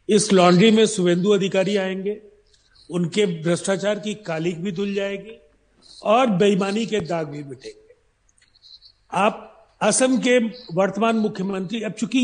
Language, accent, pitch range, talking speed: Hindi, native, 190-240 Hz, 125 wpm